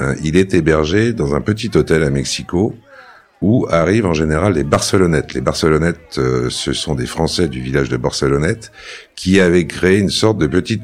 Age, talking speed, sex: 60-79, 175 wpm, male